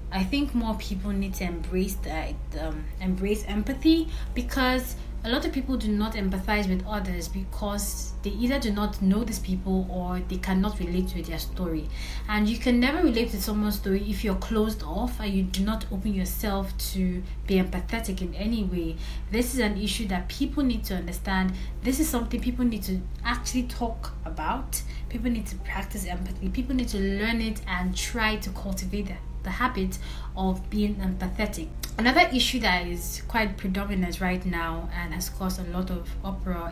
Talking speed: 185 wpm